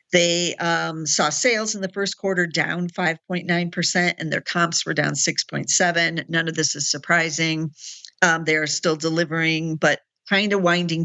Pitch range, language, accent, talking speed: 160-190 Hz, English, American, 160 wpm